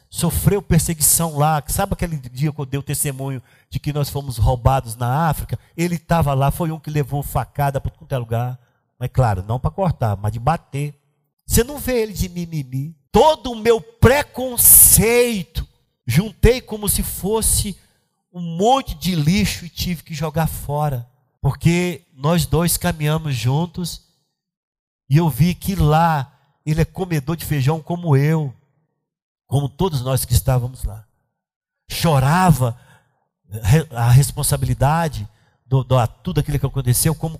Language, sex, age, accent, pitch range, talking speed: Portuguese, male, 50-69, Brazilian, 135-185 Hz, 150 wpm